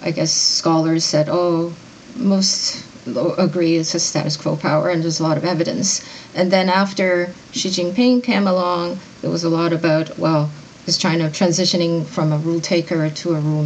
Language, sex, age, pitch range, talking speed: English, female, 30-49, 165-190 Hz, 180 wpm